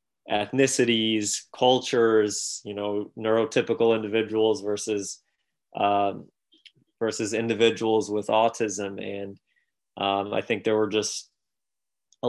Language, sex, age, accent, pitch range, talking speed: English, male, 20-39, American, 105-115 Hz, 100 wpm